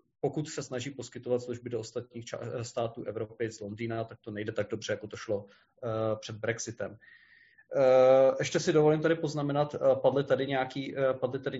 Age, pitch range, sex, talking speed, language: 30-49, 120-135 Hz, male, 165 wpm, Czech